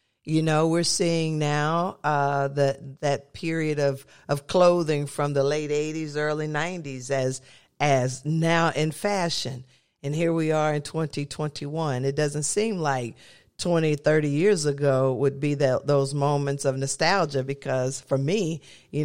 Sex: female